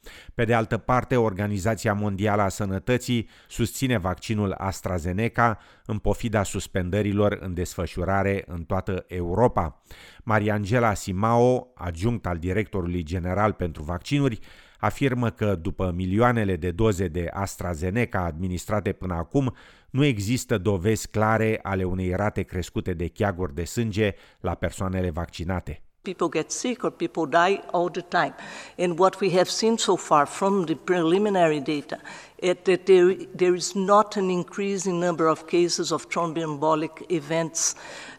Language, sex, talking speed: English, male, 140 wpm